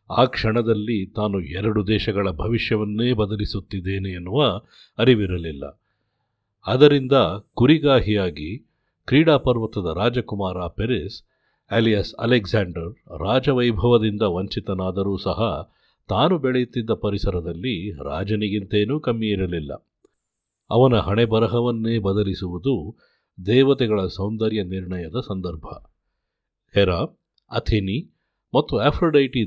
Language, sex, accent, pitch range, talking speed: Kannada, male, native, 95-120 Hz, 75 wpm